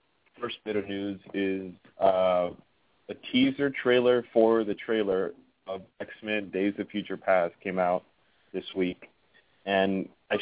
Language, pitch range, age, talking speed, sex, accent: English, 95-110 Hz, 30-49, 140 wpm, male, American